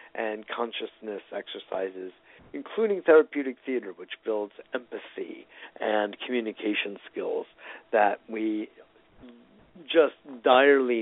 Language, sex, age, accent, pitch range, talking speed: English, male, 50-69, American, 110-150 Hz, 85 wpm